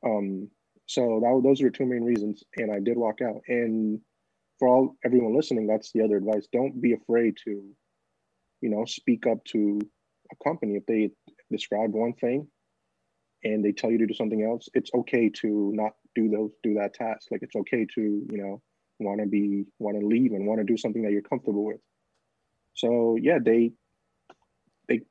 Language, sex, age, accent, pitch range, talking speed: English, male, 30-49, American, 105-125 Hz, 195 wpm